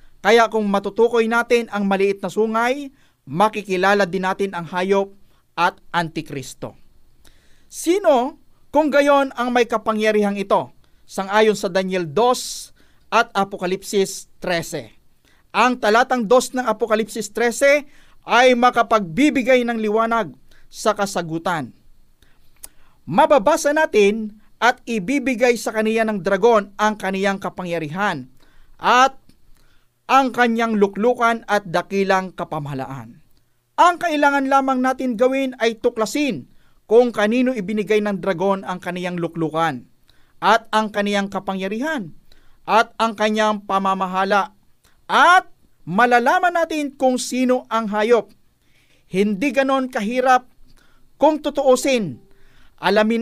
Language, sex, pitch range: Filipino, male, 195-250 Hz